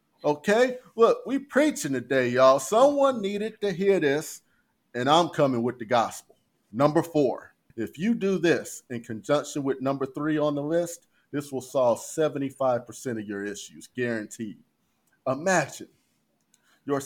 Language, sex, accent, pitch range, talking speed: English, male, American, 130-195 Hz, 145 wpm